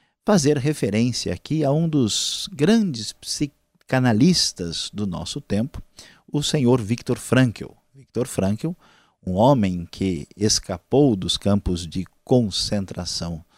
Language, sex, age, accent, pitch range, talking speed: Portuguese, male, 50-69, Brazilian, 100-140 Hz, 110 wpm